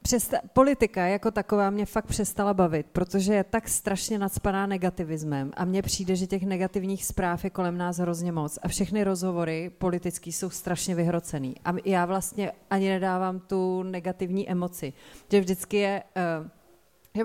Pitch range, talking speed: 175-200 Hz, 155 wpm